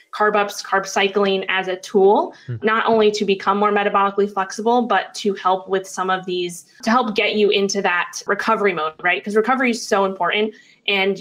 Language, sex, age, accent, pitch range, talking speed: English, female, 20-39, American, 190-215 Hz, 195 wpm